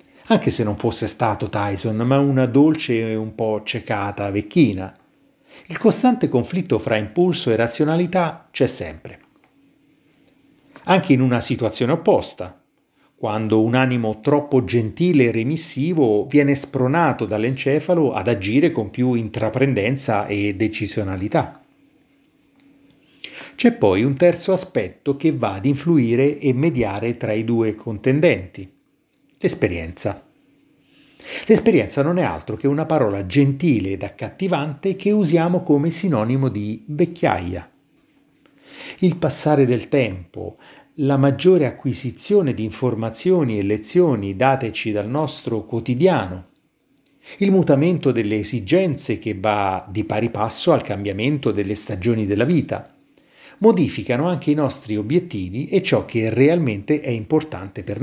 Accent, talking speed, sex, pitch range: native, 125 wpm, male, 110-170 Hz